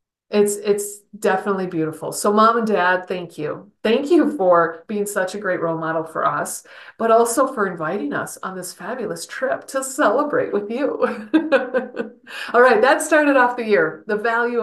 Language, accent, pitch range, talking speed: English, American, 175-240 Hz, 175 wpm